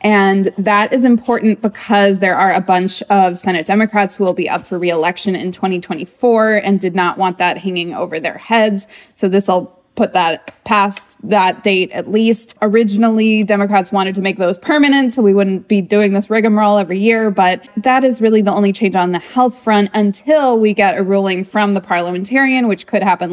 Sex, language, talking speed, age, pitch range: female, English, 200 wpm, 20-39, 185-215 Hz